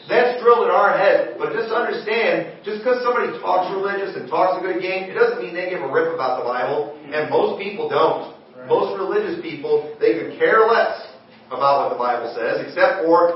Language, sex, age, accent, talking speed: English, male, 40-59, American, 205 wpm